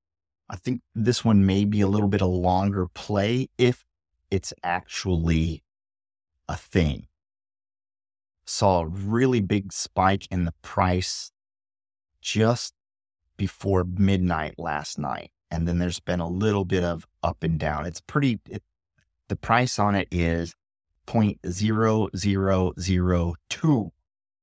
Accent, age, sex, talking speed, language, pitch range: American, 30-49, male, 130 wpm, English, 85-100 Hz